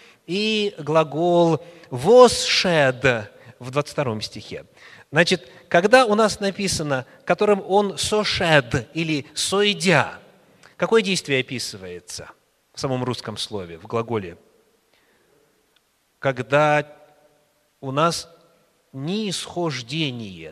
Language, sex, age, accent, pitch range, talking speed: Russian, male, 30-49, native, 150-215 Hz, 85 wpm